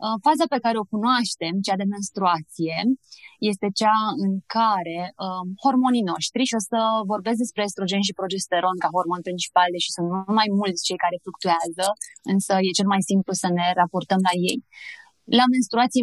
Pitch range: 185-215 Hz